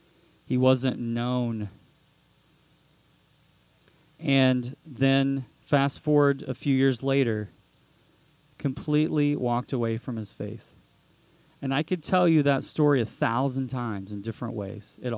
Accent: American